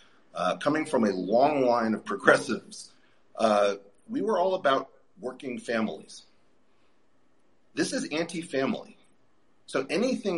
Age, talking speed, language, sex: 40-59, 115 wpm, English, male